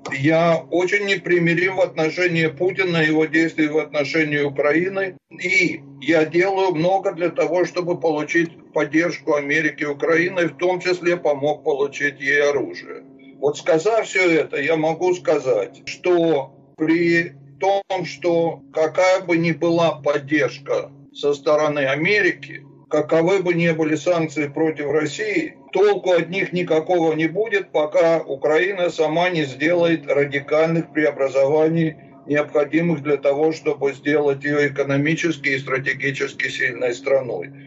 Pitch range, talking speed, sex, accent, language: 145-175 Hz, 130 wpm, male, native, Russian